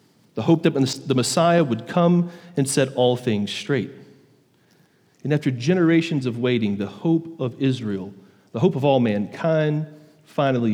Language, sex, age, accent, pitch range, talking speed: English, male, 40-59, American, 135-180 Hz, 150 wpm